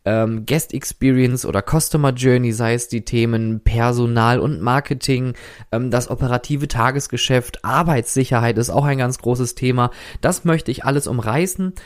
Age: 20-39